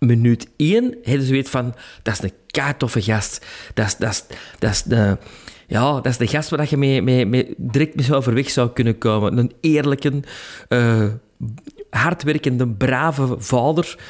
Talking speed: 185 wpm